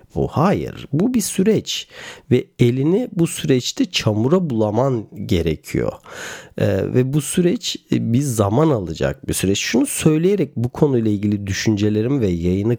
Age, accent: 40-59, native